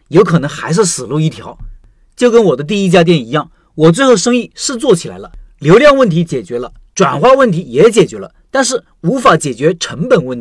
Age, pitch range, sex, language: 50-69, 160-225 Hz, male, Chinese